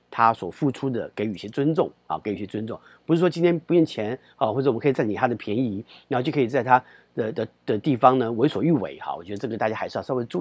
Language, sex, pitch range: Chinese, male, 110-170 Hz